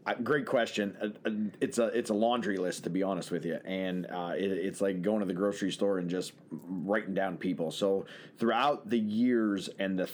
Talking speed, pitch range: 215 wpm, 95-110 Hz